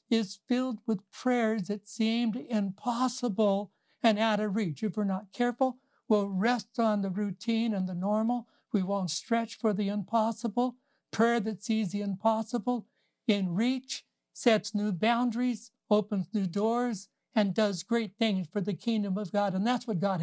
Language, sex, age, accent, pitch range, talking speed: English, male, 60-79, American, 185-235 Hz, 165 wpm